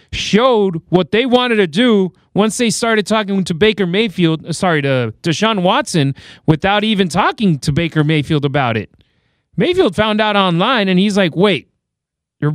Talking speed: 165 wpm